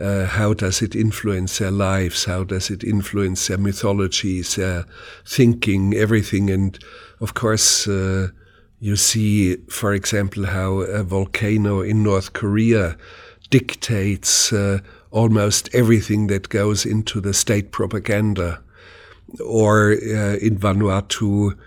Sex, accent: male, German